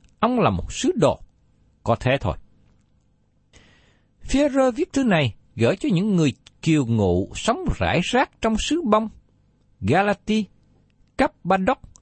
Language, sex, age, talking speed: Vietnamese, male, 60-79, 130 wpm